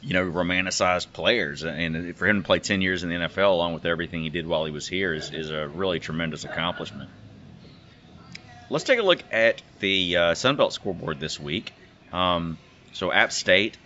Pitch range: 85-95 Hz